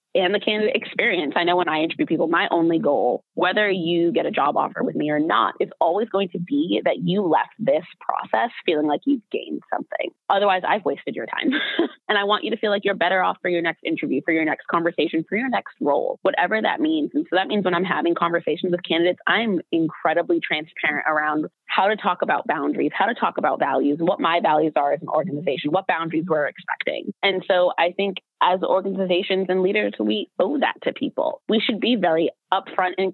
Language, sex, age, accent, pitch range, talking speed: English, female, 20-39, American, 165-220 Hz, 220 wpm